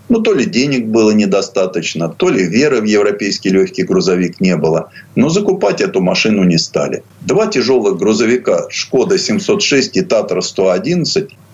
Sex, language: male, Russian